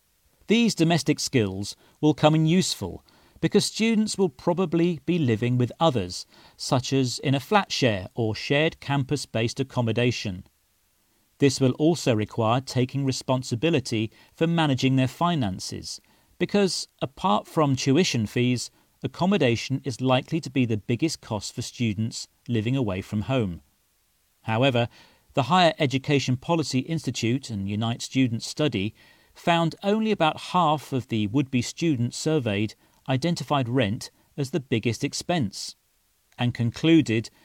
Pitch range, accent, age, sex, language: 110-155 Hz, British, 40-59, male, Chinese